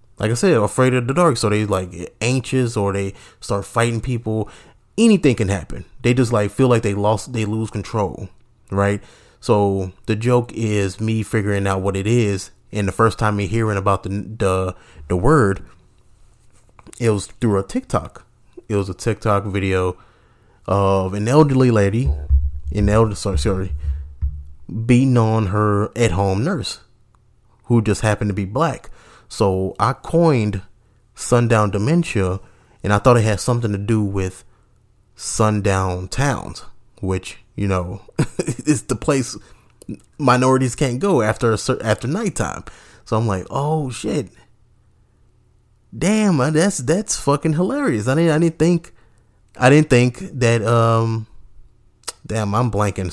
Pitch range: 100-120 Hz